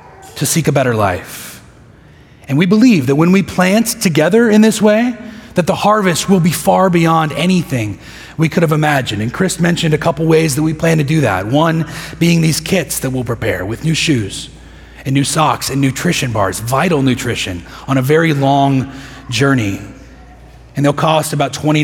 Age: 30-49